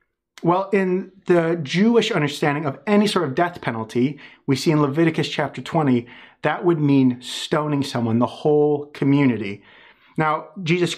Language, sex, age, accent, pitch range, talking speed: English, male, 30-49, American, 135-175 Hz, 150 wpm